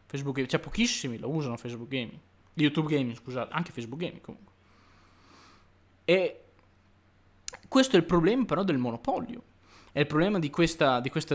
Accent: native